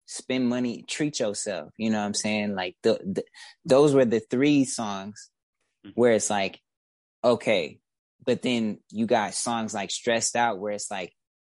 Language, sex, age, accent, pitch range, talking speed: English, male, 20-39, American, 110-125 Hz, 160 wpm